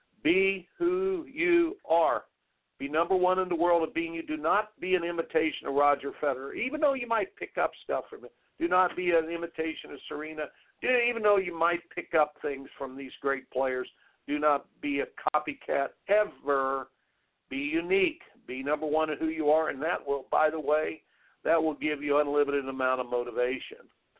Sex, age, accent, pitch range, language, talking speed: male, 50-69, American, 150-200 Hz, English, 195 wpm